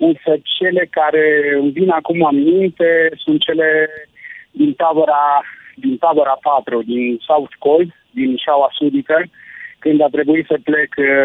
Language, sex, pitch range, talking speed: Romanian, male, 140-180 Hz, 135 wpm